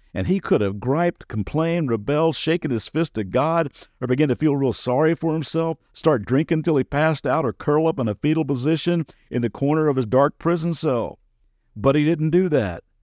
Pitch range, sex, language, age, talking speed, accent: 115-155 Hz, male, English, 50-69, 210 wpm, American